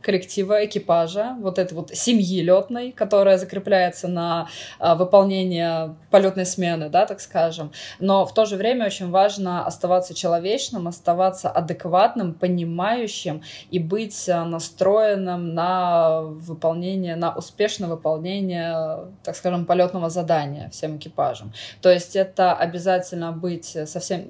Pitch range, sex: 165-190 Hz, female